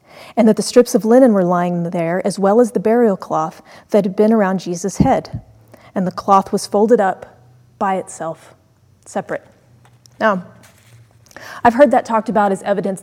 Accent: American